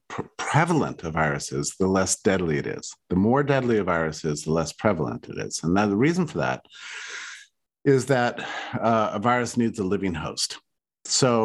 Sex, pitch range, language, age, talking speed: male, 85-120 Hz, English, 50-69, 190 wpm